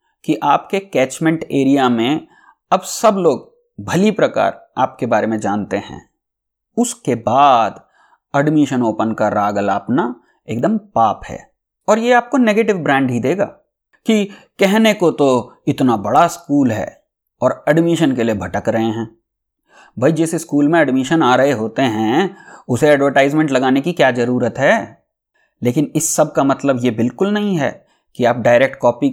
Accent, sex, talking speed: Indian, male, 125 wpm